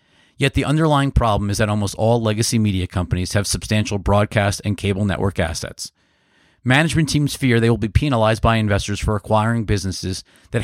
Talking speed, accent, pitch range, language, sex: 175 wpm, American, 100-125 Hz, English, male